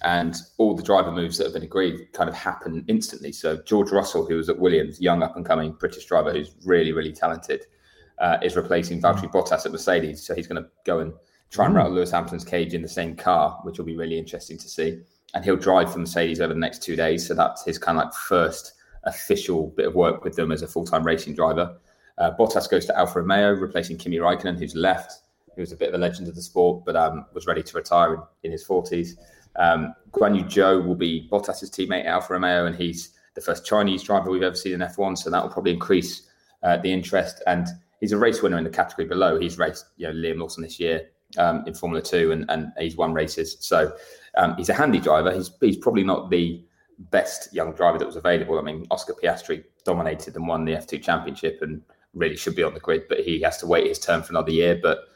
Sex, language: male, English